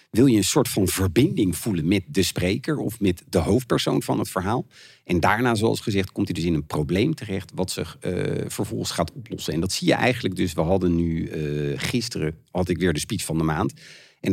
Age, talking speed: 50-69, 225 wpm